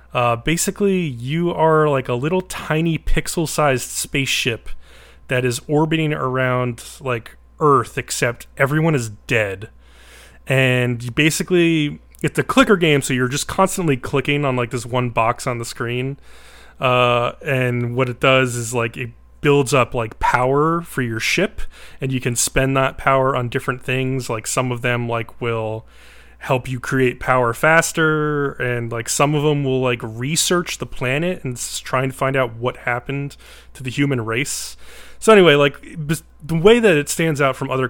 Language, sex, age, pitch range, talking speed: English, male, 20-39, 120-145 Hz, 170 wpm